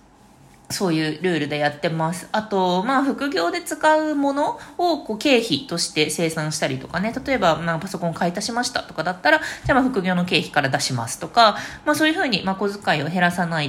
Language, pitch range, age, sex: Japanese, 175-260 Hz, 20-39, female